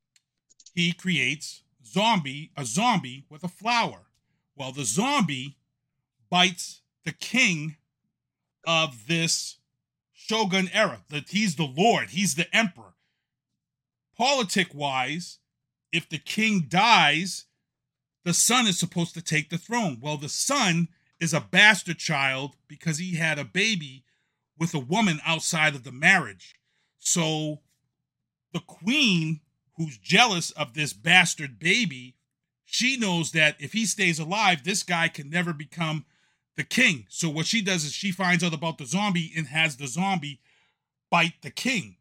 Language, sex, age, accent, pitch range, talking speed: English, male, 40-59, American, 150-195 Hz, 145 wpm